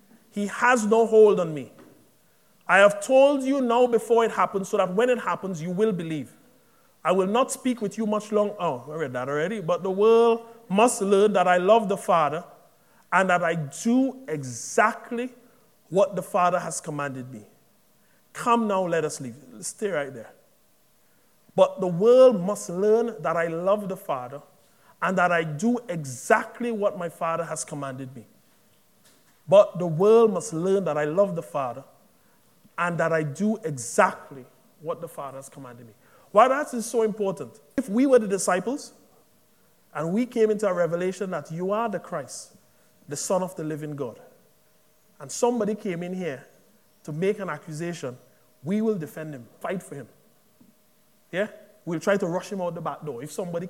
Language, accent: English, Nigerian